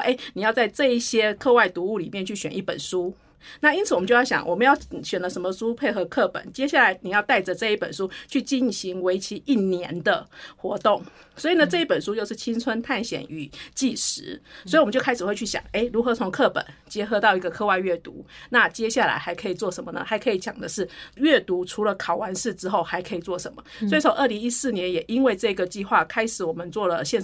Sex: female